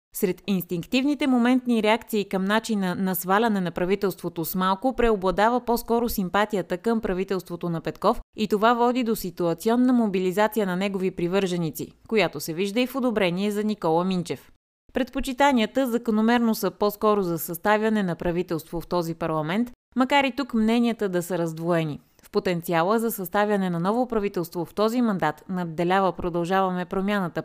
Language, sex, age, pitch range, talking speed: Bulgarian, female, 20-39, 180-230 Hz, 150 wpm